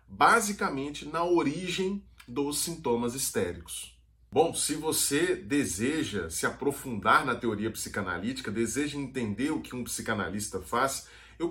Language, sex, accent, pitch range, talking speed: Portuguese, male, Brazilian, 115-155 Hz, 120 wpm